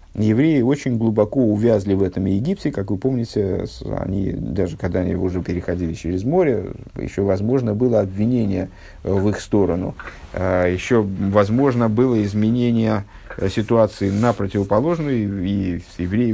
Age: 50-69